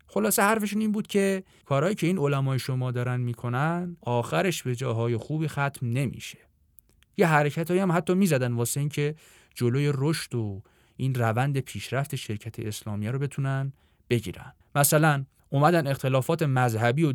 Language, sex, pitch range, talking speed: Persian, male, 120-155 Hz, 145 wpm